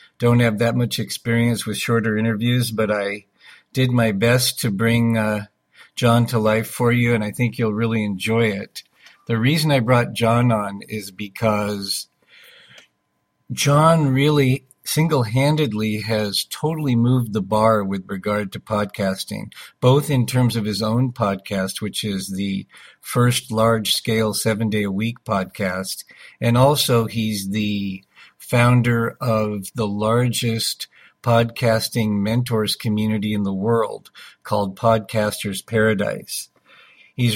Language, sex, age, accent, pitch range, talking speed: English, male, 50-69, American, 105-120 Hz, 130 wpm